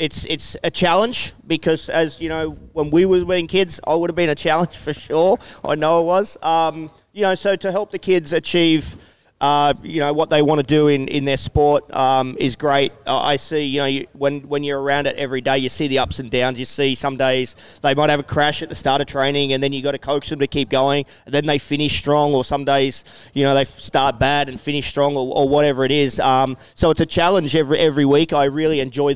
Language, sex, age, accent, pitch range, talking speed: English, male, 20-39, Australian, 130-155 Hz, 255 wpm